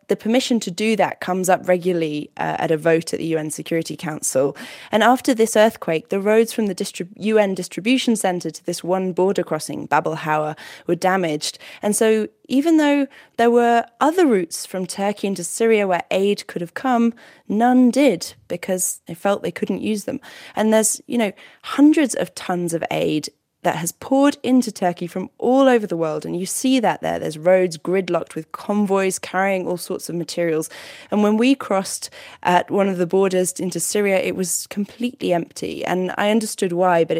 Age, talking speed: 20-39, 185 wpm